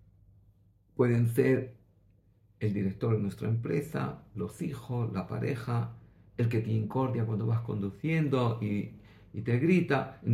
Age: 50-69